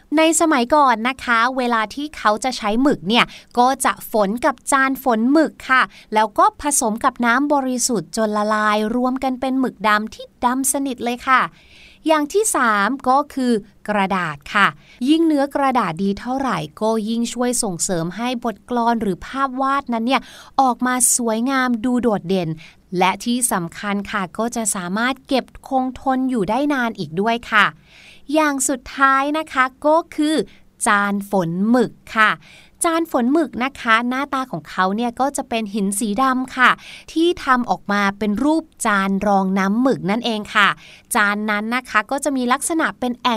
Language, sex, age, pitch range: Thai, female, 20-39, 210-270 Hz